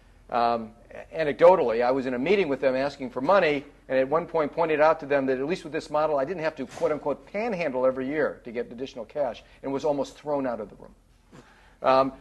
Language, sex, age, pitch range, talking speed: English, male, 40-59, 125-155 Hz, 230 wpm